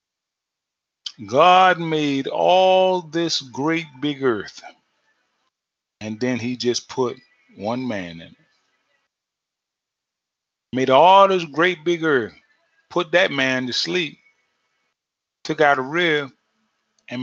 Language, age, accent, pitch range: English, 30-49, American, 110-135 Hz